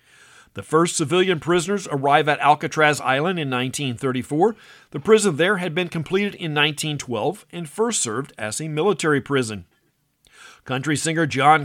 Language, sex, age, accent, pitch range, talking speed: English, male, 50-69, American, 135-180 Hz, 145 wpm